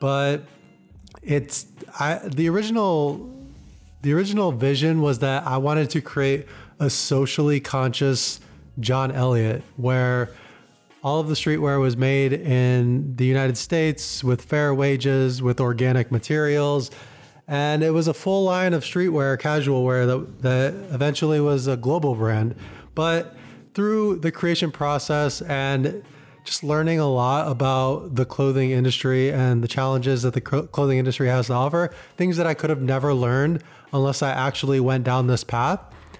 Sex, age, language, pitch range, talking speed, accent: male, 20-39, English, 130-155 Hz, 150 wpm, American